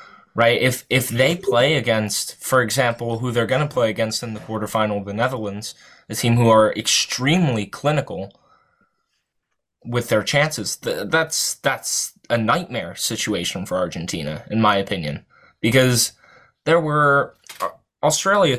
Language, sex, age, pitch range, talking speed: English, male, 20-39, 105-120 Hz, 140 wpm